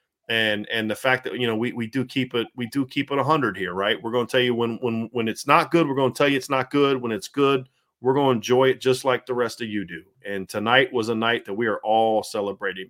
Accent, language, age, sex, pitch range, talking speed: American, English, 40-59, male, 115-140 Hz, 300 wpm